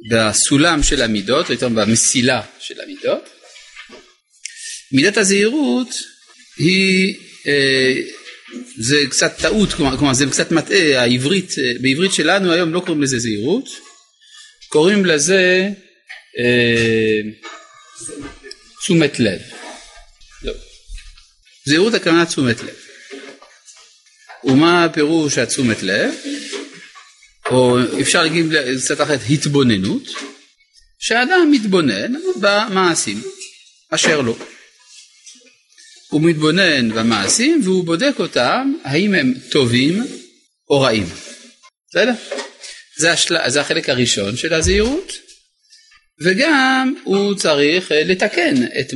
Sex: male